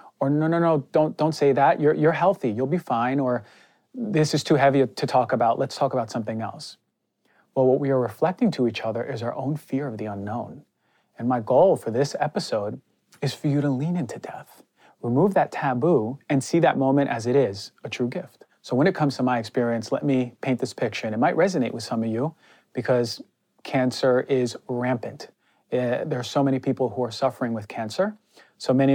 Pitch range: 115-145 Hz